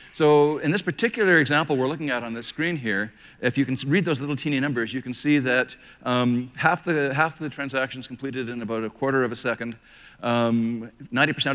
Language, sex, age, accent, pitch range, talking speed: English, male, 50-69, American, 120-145 Hz, 210 wpm